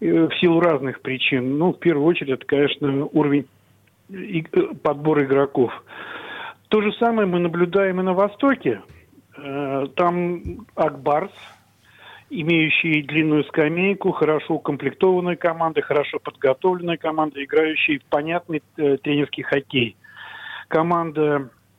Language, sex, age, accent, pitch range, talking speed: Russian, male, 50-69, native, 145-180 Hz, 105 wpm